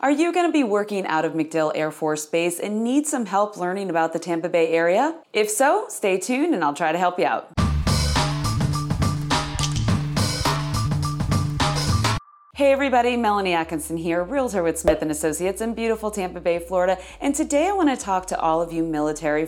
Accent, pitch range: American, 155-220 Hz